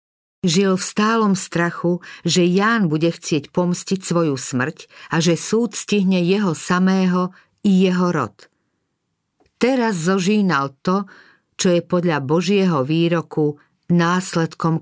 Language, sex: Slovak, female